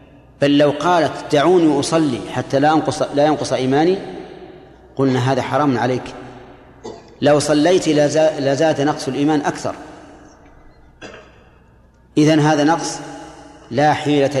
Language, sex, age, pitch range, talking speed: Arabic, male, 40-59, 130-150 Hz, 105 wpm